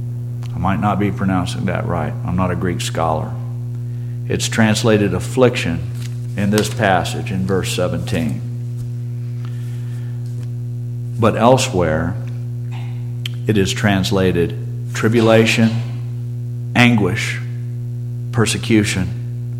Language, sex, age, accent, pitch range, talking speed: English, male, 50-69, American, 110-120 Hz, 85 wpm